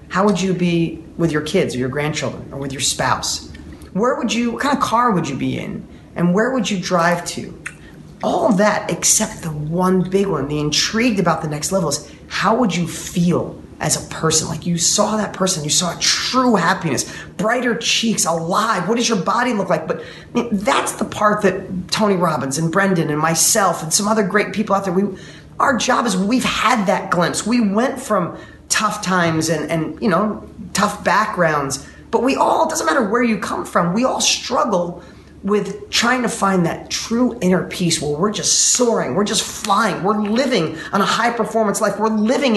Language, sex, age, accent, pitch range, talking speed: English, male, 30-49, American, 170-220 Hz, 210 wpm